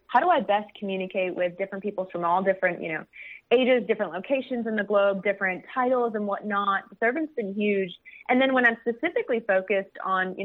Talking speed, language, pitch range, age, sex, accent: 205 wpm, English, 185-215 Hz, 20-39, female, American